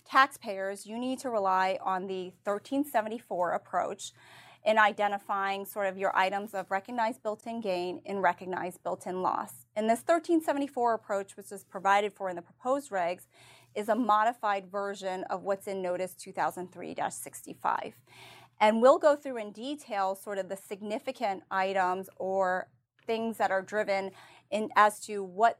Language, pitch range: English, 190-230 Hz